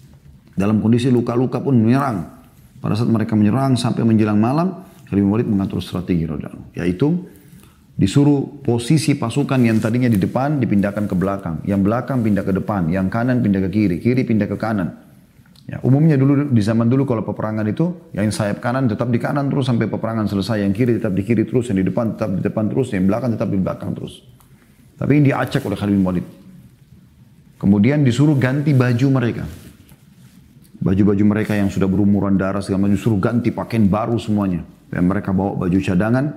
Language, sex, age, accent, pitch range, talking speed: Indonesian, male, 30-49, native, 100-130 Hz, 180 wpm